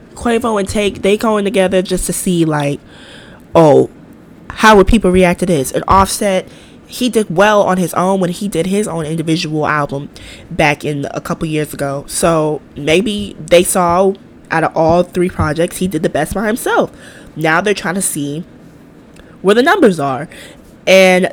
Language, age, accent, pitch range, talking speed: English, 20-39, American, 155-210 Hz, 175 wpm